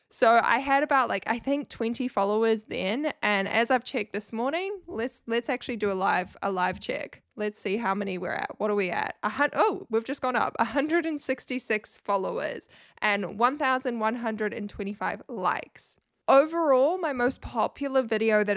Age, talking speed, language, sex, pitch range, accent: 10-29, 170 wpm, English, female, 200-265 Hz, Australian